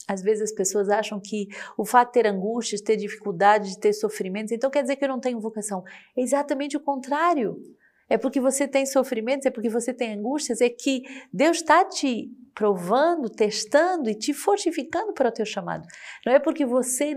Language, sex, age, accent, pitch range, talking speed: Portuguese, female, 40-59, Brazilian, 200-265 Hz, 200 wpm